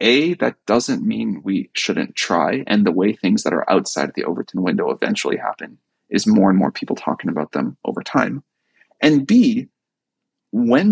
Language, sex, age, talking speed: English, male, 30-49, 175 wpm